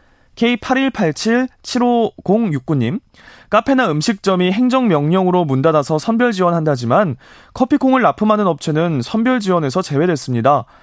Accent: native